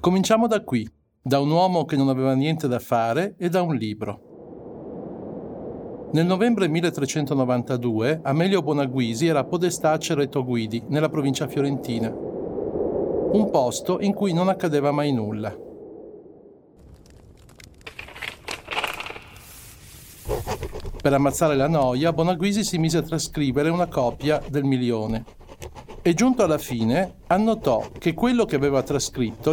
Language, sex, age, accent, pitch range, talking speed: Italian, male, 50-69, native, 130-185 Hz, 120 wpm